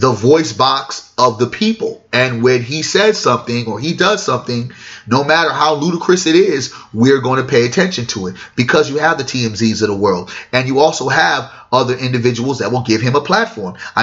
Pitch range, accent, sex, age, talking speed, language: 130-190 Hz, American, male, 30-49, 210 wpm, English